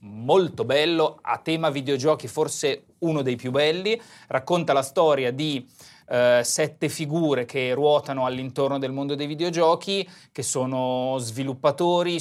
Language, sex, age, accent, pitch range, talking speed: Italian, male, 30-49, native, 130-160 Hz, 135 wpm